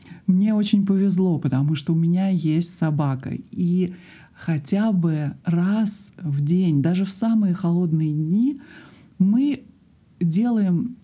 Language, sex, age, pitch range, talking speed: Russian, male, 50-69, 155-200 Hz, 120 wpm